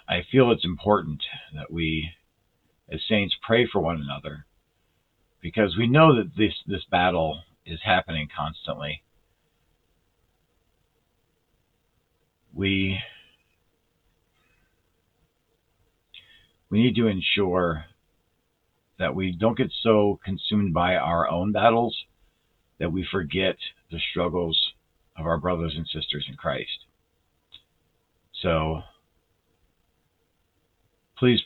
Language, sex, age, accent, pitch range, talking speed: English, male, 50-69, American, 80-100 Hz, 95 wpm